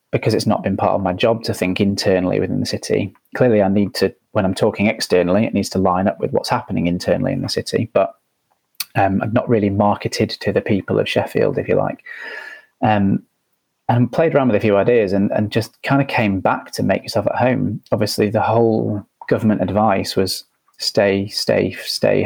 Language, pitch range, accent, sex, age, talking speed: English, 100-115 Hz, British, male, 30-49, 210 wpm